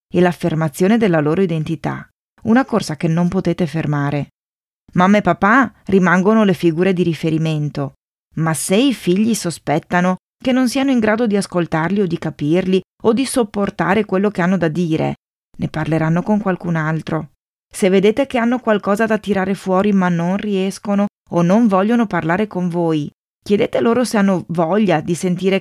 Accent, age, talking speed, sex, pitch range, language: native, 30-49, 165 wpm, female, 165-210 Hz, Italian